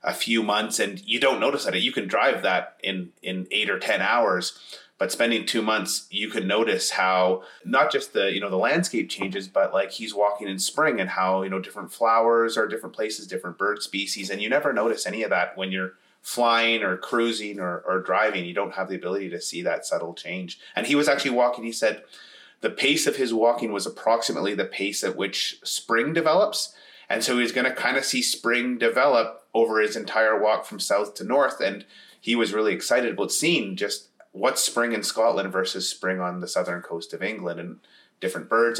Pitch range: 100-120 Hz